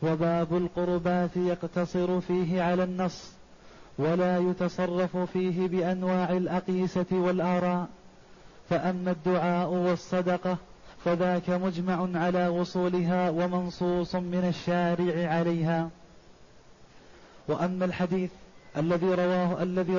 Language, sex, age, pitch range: Arabic, male, 20-39, 180-185 Hz